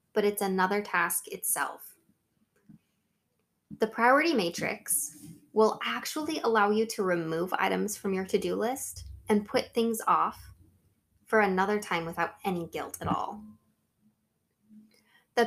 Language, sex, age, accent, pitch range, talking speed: English, female, 10-29, American, 185-235 Hz, 125 wpm